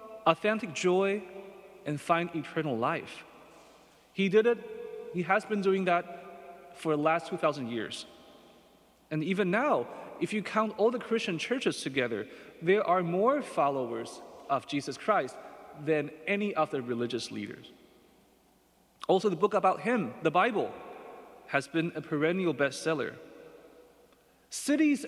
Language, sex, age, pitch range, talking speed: English, male, 30-49, 160-210 Hz, 130 wpm